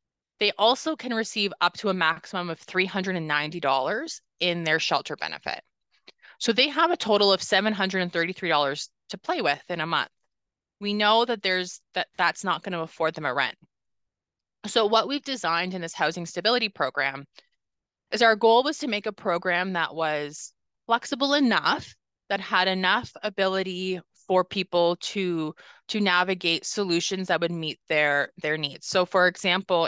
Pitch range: 160-195 Hz